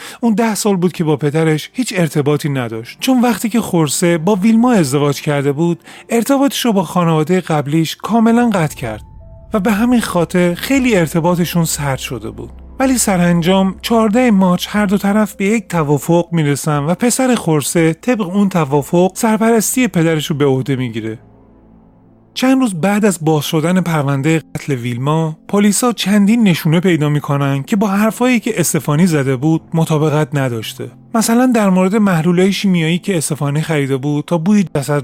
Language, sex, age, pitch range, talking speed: Persian, male, 30-49, 150-210 Hz, 160 wpm